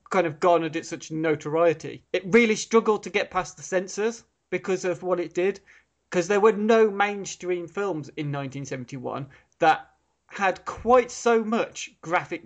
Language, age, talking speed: English, 30-49, 170 wpm